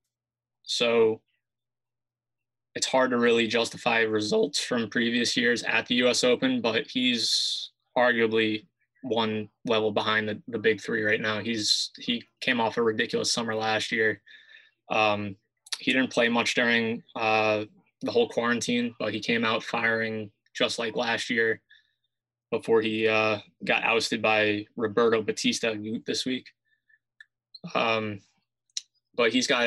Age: 20-39